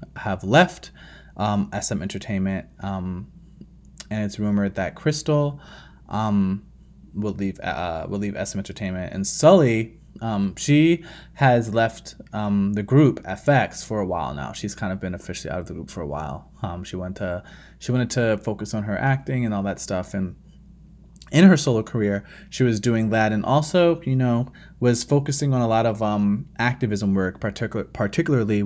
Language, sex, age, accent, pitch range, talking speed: English, male, 20-39, American, 100-130 Hz, 175 wpm